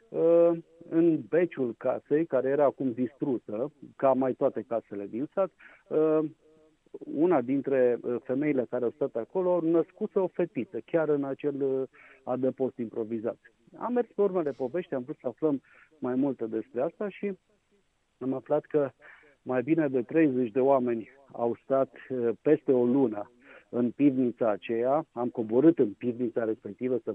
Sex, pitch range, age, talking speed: male, 115-150 Hz, 50-69, 145 wpm